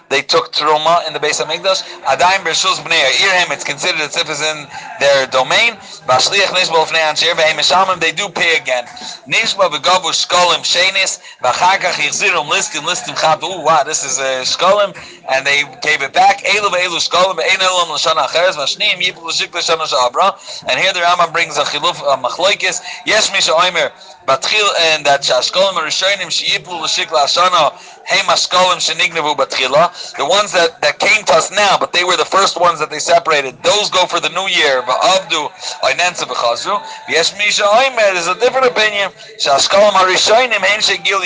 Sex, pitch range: male, 150-190 Hz